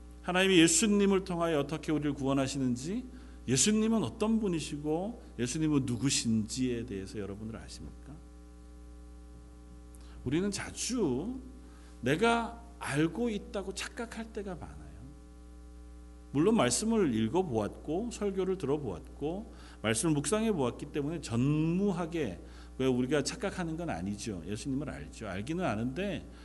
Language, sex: Korean, male